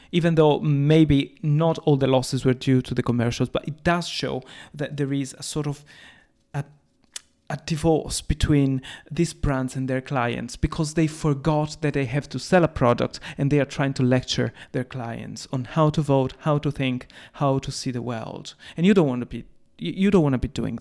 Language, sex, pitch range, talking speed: English, male, 135-165 Hz, 210 wpm